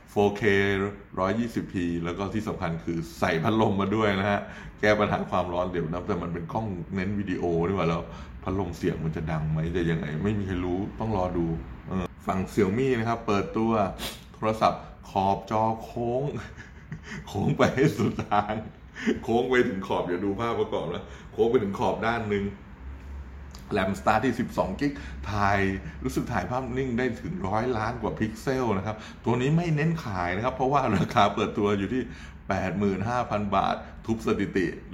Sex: male